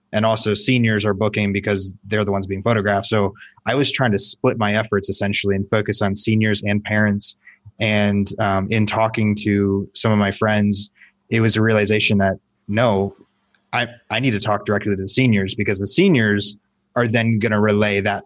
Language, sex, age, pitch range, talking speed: English, male, 20-39, 100-110 Hz, 195 wpm